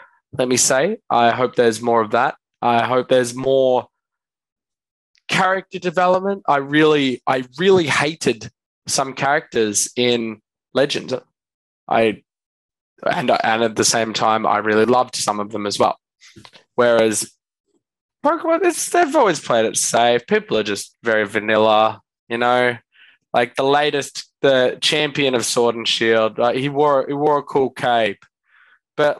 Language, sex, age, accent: English, male, 20-39, Australian